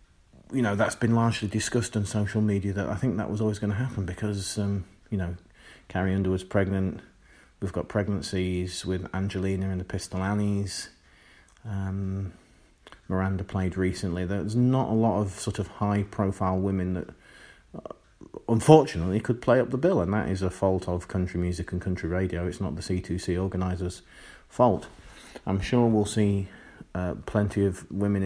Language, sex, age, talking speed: English, male, 30-49, 170 wpm